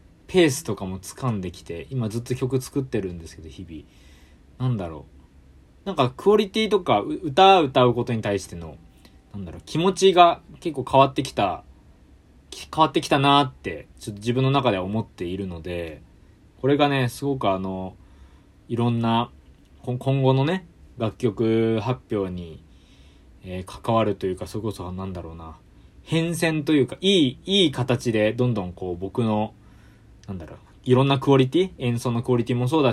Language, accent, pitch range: Japanese, native, 90-135 Hz